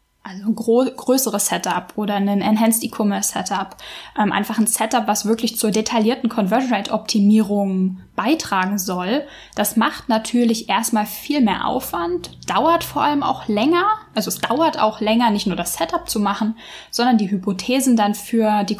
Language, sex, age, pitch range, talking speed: German, female, 10-29, 205-245 Hz, 150 wpm